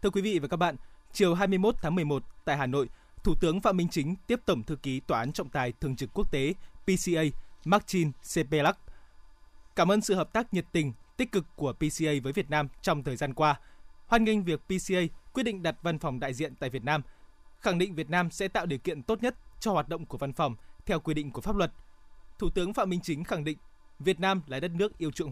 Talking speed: 240 wpm